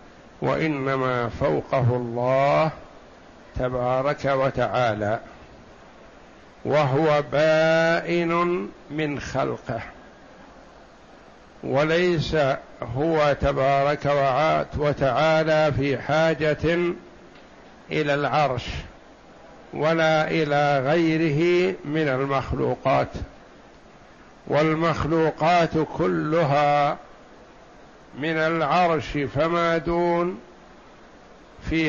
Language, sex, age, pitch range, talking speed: Arabic, male, 60-79, 140-165 Hz, 55 wpm